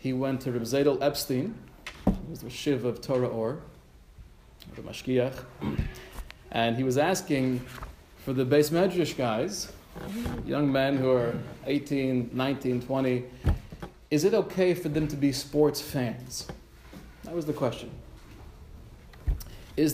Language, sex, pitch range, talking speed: English, male, 120-150 Hz, 130 wpm